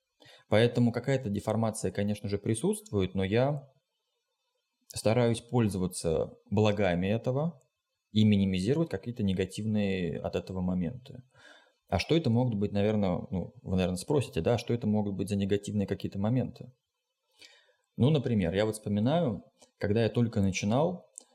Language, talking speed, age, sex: Russian, 130 wpm, 20-39, male